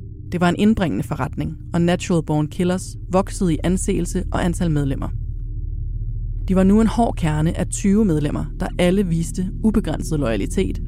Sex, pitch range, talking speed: female, 110-185 Hz, 160 wpm